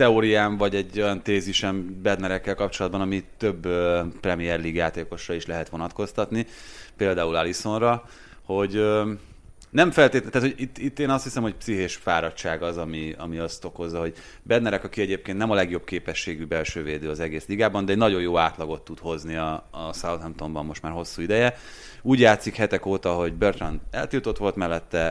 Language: Hungarian